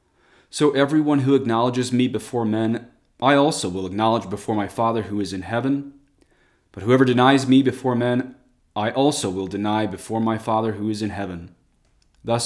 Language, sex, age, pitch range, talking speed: English, male, 30-49, 105-130 Hz, 175 wpm